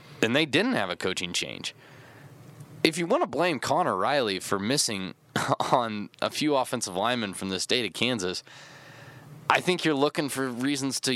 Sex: male